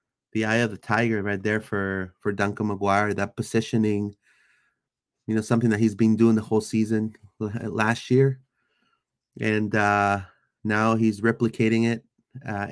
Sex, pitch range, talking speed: male, 105-130 Hz, 155 wpm